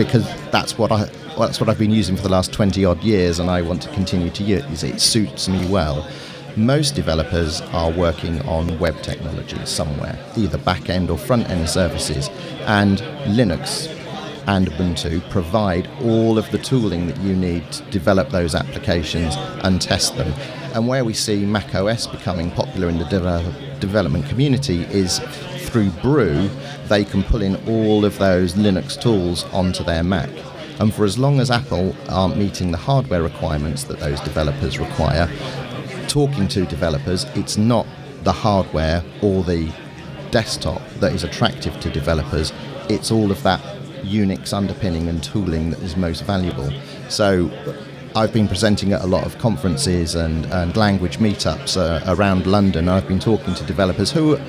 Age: 40-59